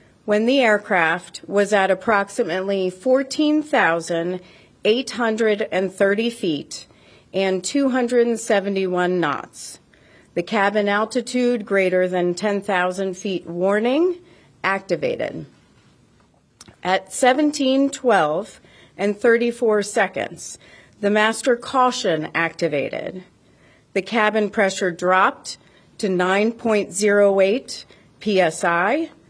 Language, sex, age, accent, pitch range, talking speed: English, female, 40-59, American, 185-235 Hz, 75 wpm